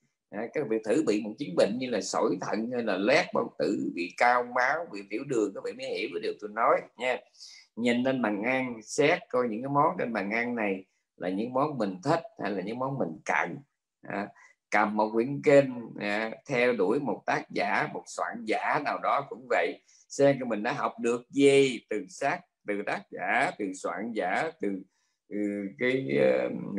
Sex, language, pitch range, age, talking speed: male, Vietnamese, 105-140 Hz, 20-39, 205 wpm